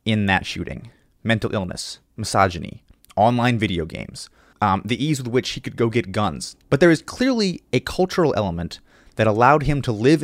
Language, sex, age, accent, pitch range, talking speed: English, male, 30-49, American, 100-140 Hz, 180 wpm